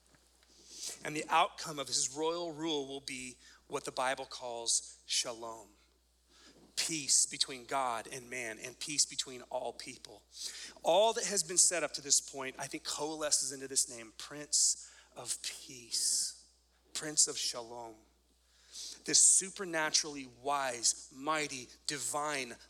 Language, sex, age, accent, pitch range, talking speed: English, male, 30-49, American, 115-155 Hz, 130 wpm